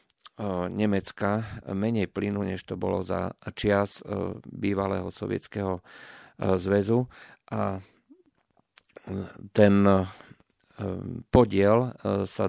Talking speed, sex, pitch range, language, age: 70 wpm, male, 95-105 Hz, Slovak, 40-59